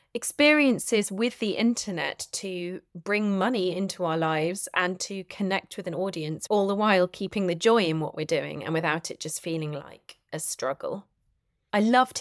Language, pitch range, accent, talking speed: English, 165-210 Hz, British, 175 wpm